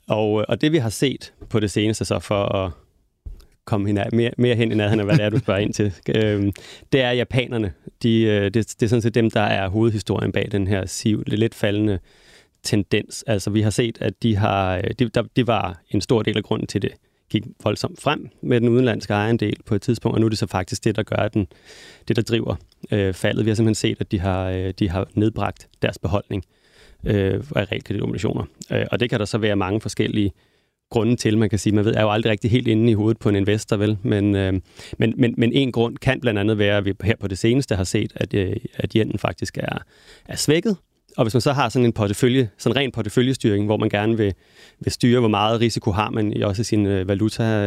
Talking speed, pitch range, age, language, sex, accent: 235 wpm, 105-115 Hz, 30-49, Danish, male, native